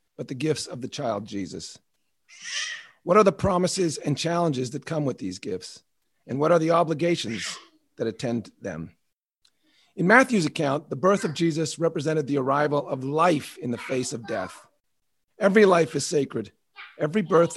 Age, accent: 40-59, American